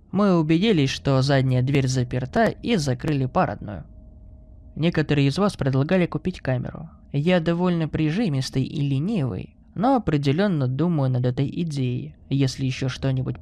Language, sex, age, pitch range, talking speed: Russian, male, 20-39, 130-175 Hz, 130 wpm